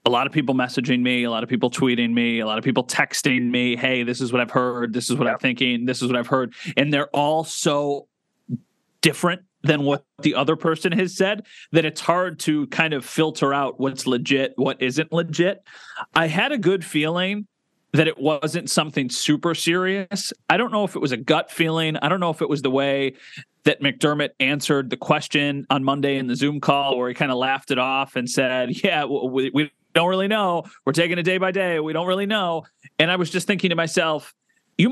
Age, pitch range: 30-49, 130-170 Hz